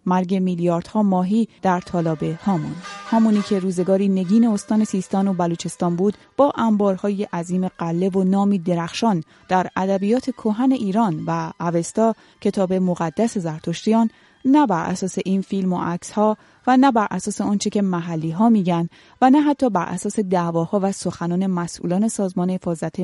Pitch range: 175-225 Hz